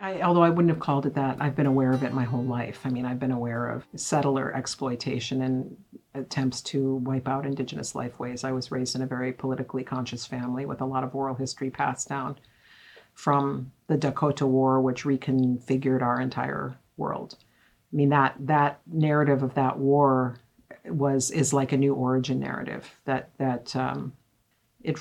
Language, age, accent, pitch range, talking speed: English, 50-69, American, 130-140 Hz, 185 wpm